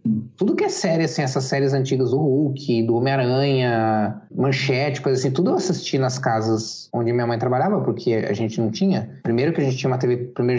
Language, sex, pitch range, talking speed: Portuguese, male, 120-165 Hz, 215 wpm